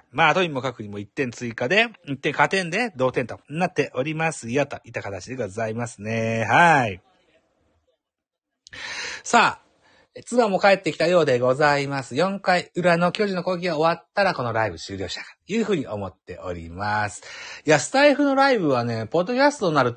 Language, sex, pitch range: Japanese, male, 115-185 Hz